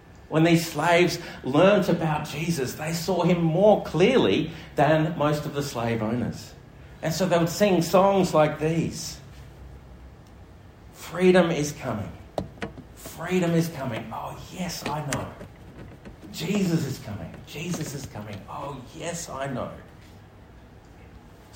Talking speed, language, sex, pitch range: 125 wpm, English, male, 110-155 Hz